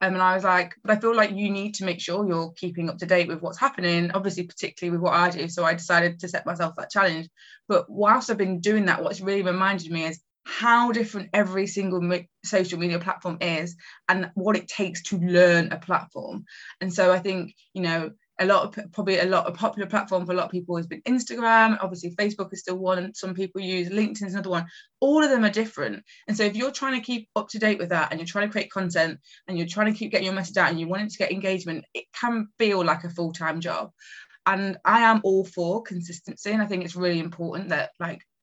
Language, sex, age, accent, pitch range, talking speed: English, female, 20-39, British, 175-210 Hz, 245 wpm